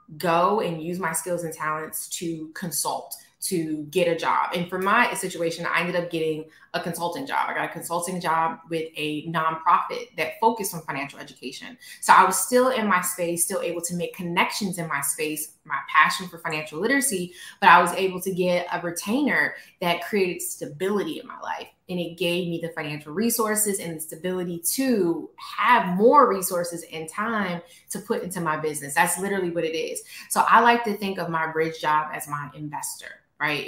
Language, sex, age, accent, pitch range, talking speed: English, female, 20-39, American, 160-190 Hz, 195 wpm